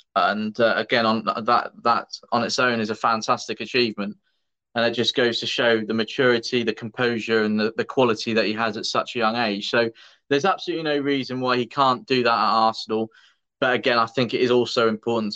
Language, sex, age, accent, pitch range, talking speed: English, male, 20-39, British, 110-125 Hz, 215 wpm